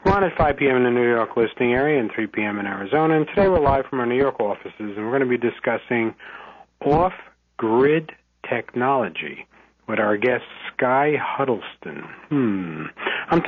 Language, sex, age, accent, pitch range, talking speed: English, male, 50-69, American, 110-140 Hz, 180 wpm